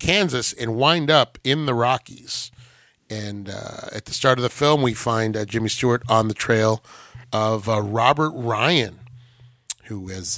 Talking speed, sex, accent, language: 170 wpm, male, American, English